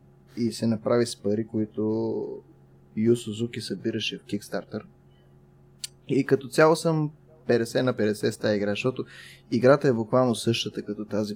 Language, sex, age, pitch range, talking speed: Bulgarian, male, 20-39, 105-125 Hz, 150 wpm